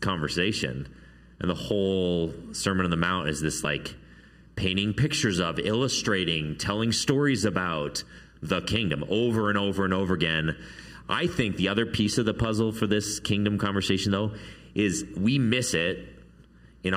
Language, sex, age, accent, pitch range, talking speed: English, male, 30-49, American, 75-100 Hz, 155 wpm